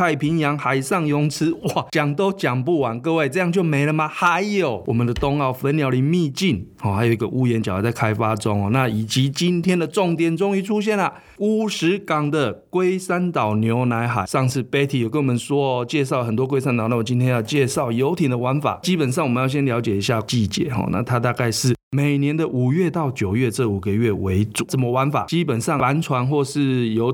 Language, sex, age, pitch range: Chinese, male, 20-39, 115-150 Hz